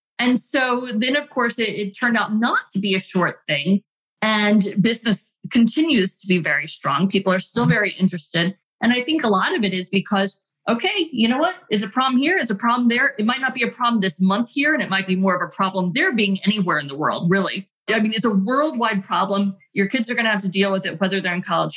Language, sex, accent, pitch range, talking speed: English, female, American, 180-220 Hz, 255 wpm